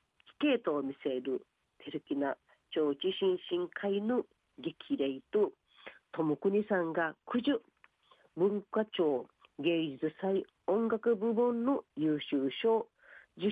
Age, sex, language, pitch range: 40-59, female, Japanese, 155-255 Hz